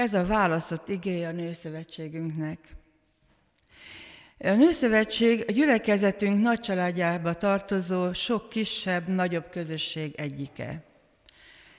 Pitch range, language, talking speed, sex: 165-210 Hz, Hungarian, 90 wpm, female